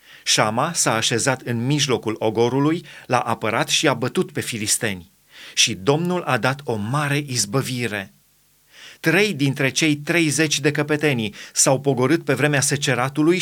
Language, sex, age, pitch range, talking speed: Romanian, male, 30-49, 125-155 Hz, 140 wpm